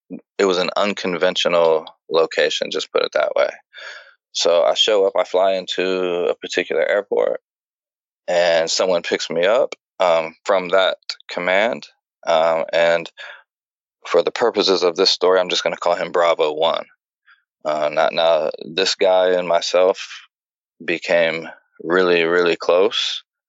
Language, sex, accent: English, male, American